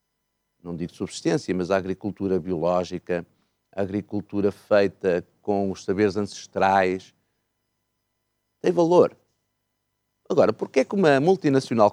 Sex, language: male, Portuguese